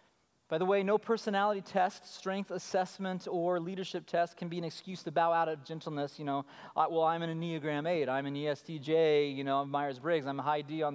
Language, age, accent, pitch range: English, 30-49, American, 145-180 Hz